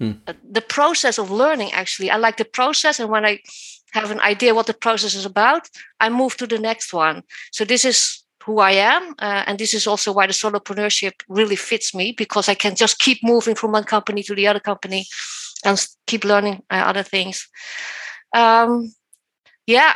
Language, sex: English, female